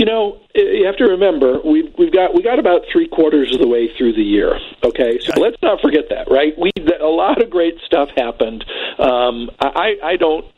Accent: American